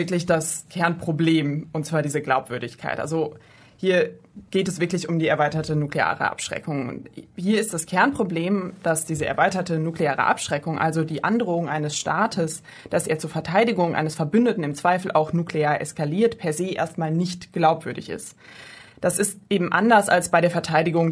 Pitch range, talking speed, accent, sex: 155-185 Hz, 165 wpm, German, female